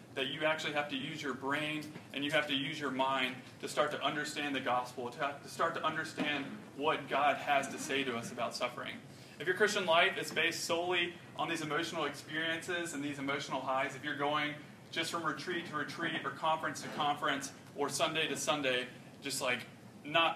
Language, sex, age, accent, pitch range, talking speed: English, male, 30-49, American, 130-155 Hz, 200 wpm